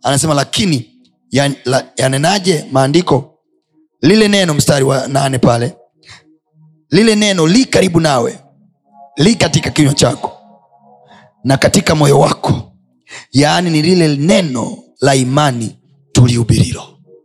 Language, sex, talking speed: Swahili, male, 110 wpm